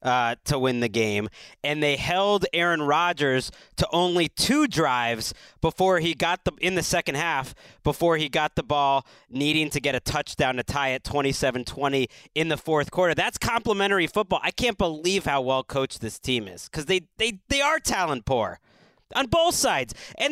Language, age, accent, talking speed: English, 30-49, American, 190 wpm